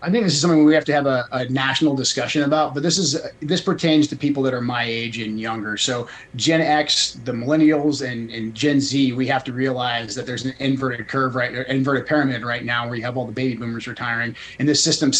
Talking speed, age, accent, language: 250 wpm, 30-49, American, English